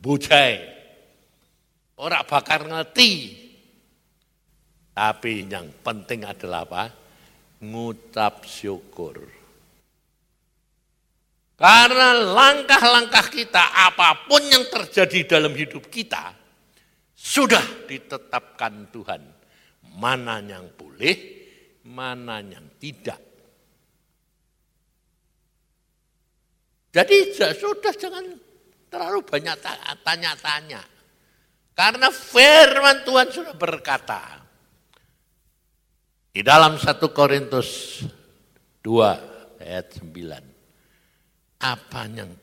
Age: 60-79